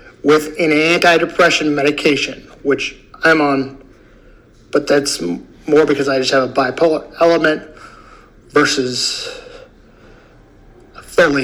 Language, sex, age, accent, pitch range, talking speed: English, male, 50-69, American, 140-170 Hz, 100 wpm